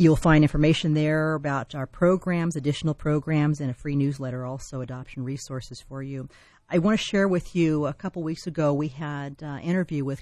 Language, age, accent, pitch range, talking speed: English, 40-59, American, 130-155 Hz, 200 wpm